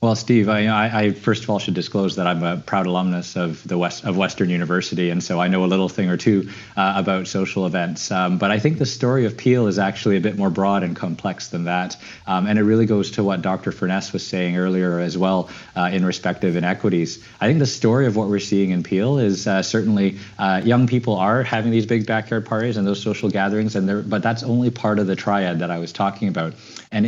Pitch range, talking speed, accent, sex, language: 90-110 Hz, 245 wpm, American, male, English